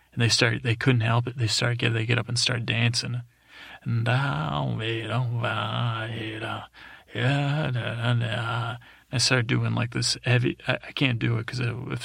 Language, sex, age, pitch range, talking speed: English, male, 30-49, 110-125 Hz, 140 wpm